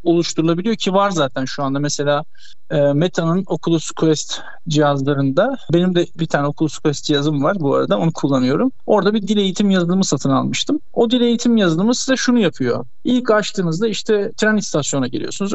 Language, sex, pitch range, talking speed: Turkish, male, 155-205 Hz, 170 wpm